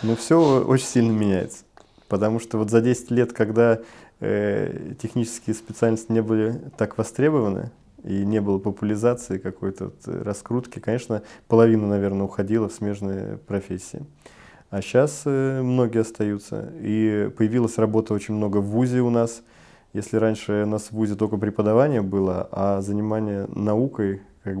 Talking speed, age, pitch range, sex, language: 145 wpm, 20-39, 100-115 Hz, male, Russian